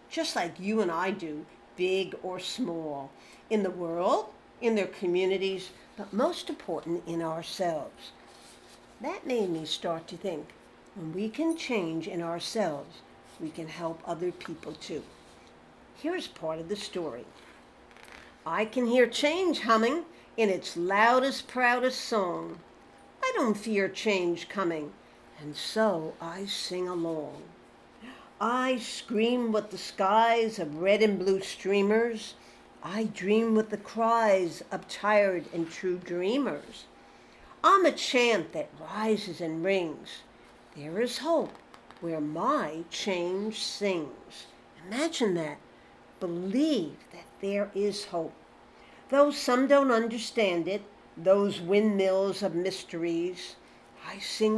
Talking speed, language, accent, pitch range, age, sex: 125 wpm, English, American, 170-225 Hz, 60-79, female